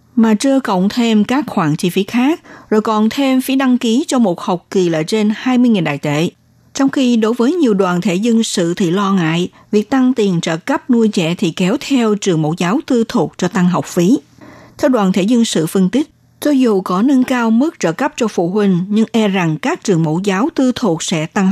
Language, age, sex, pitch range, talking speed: Vietnamese, 60-79, female, 180-250 Hz, 235 wpm